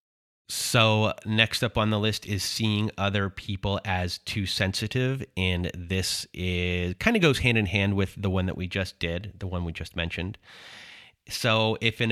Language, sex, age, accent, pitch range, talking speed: English, male, 30-49, American, 90-110 Hz, 185 wpm